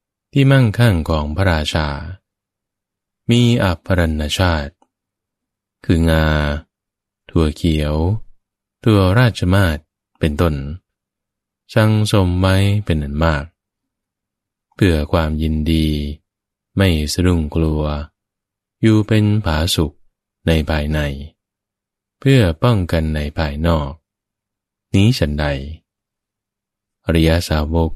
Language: English